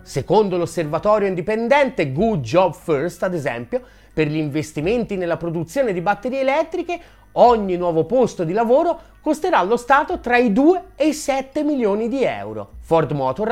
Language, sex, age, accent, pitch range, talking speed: Italian, male, 30-49, native, 155-260 Hz, 155 wpm